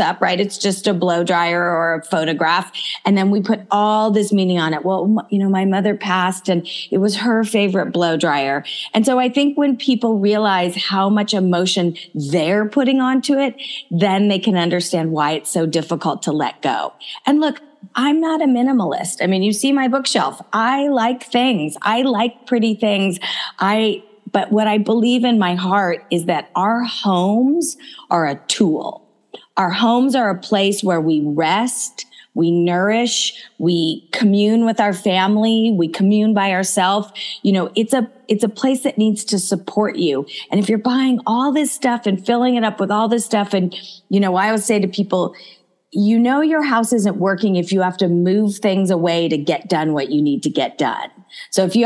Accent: American